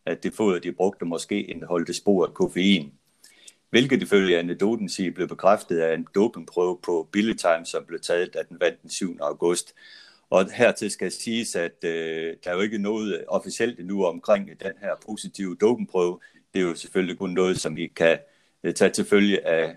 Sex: male